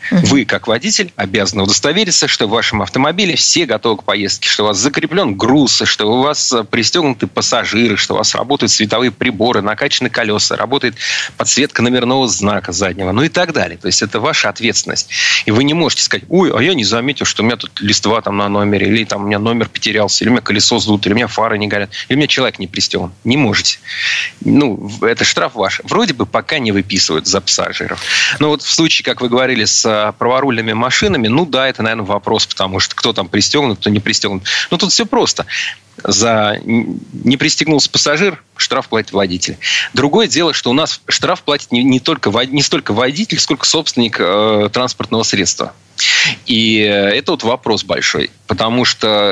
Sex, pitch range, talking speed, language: male, 105-135 Hz, 185 wpm, Russian